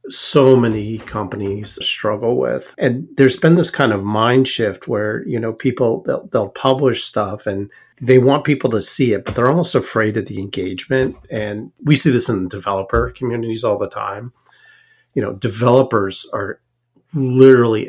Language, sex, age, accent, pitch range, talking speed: English, male, 40-59, American, 105-130 Hz, 170 wpm